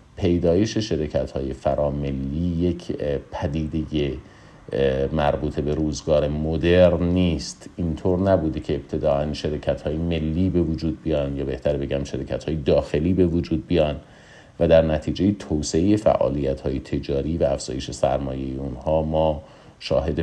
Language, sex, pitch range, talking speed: Persian, male, 75-95 Hz, 130 wpm